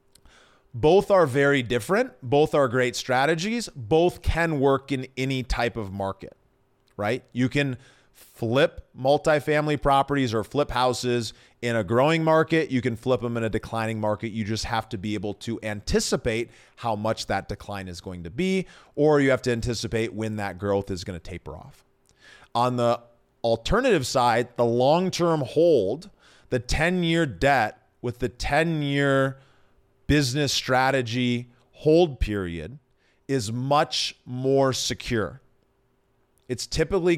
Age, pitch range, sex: 30-49, 110-140 Hz, male